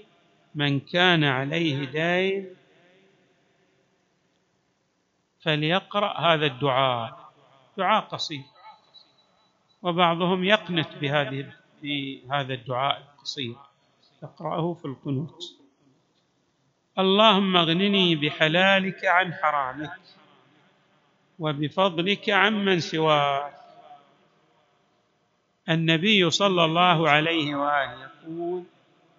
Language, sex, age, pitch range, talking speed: Arabic, male, 50-69, 145-180 Hz, 65 wpm